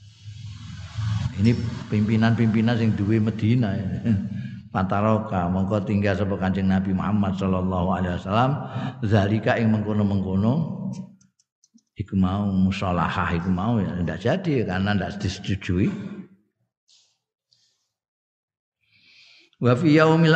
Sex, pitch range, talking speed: male, 100-115 Hz, 85 wpm